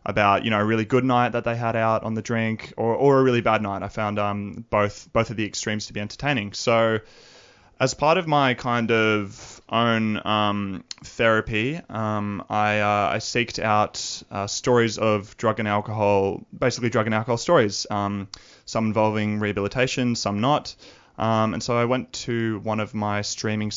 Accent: Australian